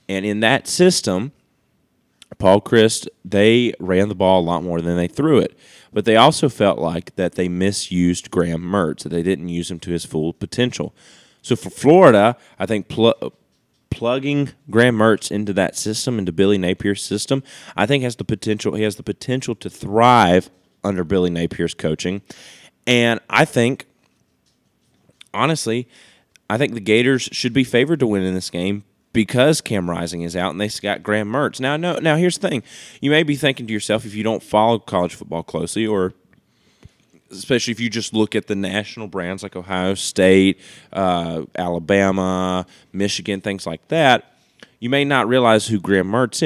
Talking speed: 180 wpm